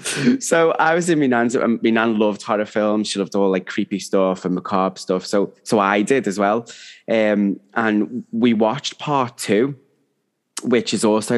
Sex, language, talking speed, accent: male, English, 185 wpm, British